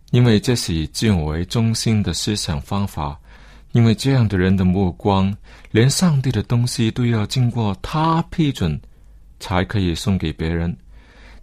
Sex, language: male, Chinese